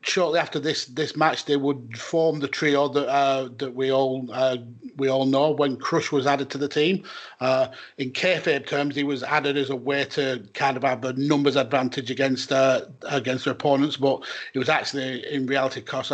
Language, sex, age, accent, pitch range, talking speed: English, male, 30-49, British, 130-150 Hz, 205 wpm